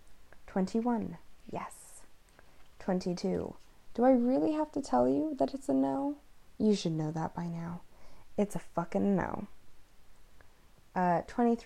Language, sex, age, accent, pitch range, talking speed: English, female, 20-39, American, 170-200 Hz, 135 wpm